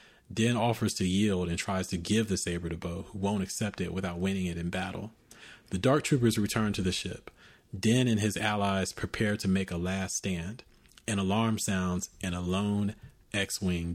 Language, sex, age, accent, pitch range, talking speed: English, male, 30-49, American, 90-110 Hz, 195 wpm